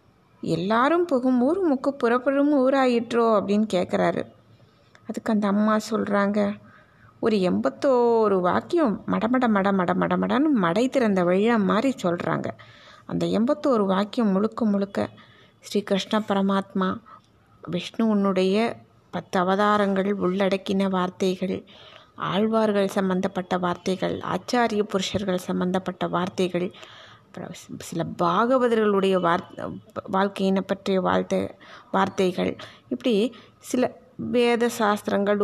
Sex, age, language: female, 20-39, Tamil